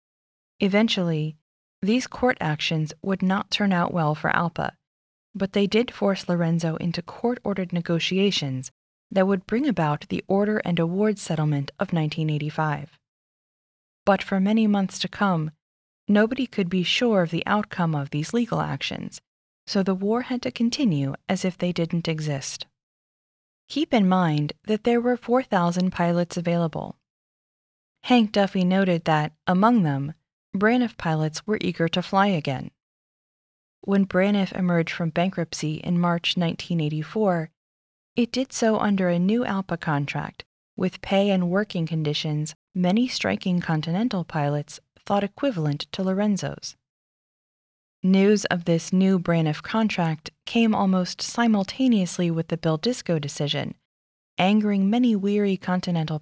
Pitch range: 160-205 Hz